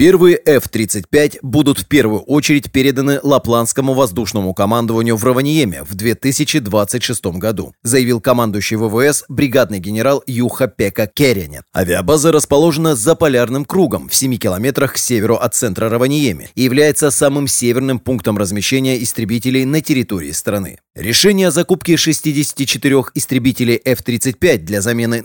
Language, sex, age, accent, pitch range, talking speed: Russian, male, 30-49, native, 110-145 Hz, 130 wpm